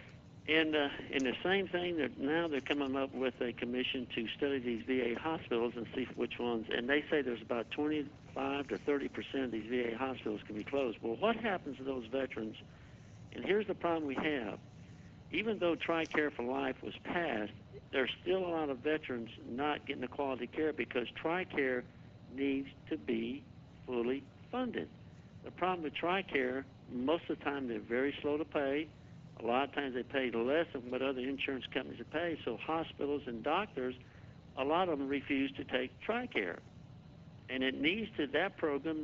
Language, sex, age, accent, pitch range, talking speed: English, male, 60-79, American, 125-155 Hz, 185 wpm